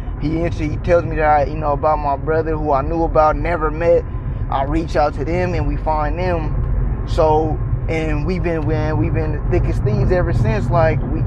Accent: American